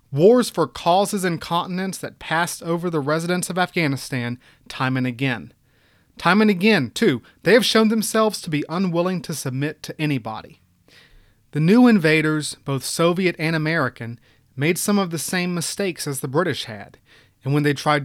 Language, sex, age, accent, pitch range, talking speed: English, male, 30-49, American, 125-165 Hz, 170 wpm